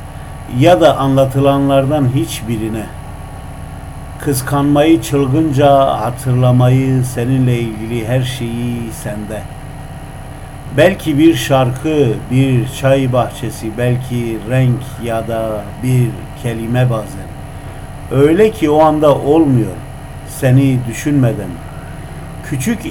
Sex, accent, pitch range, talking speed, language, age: male, native, 110-135 Hz, 85 wpm, Turkish, 50-69